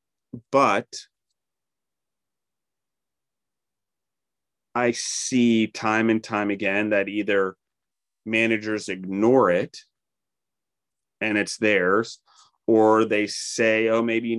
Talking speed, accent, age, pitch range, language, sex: 90 wpm, American, 30-49, 100-115 Hz, English, male